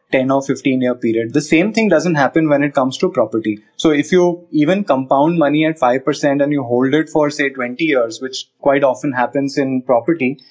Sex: male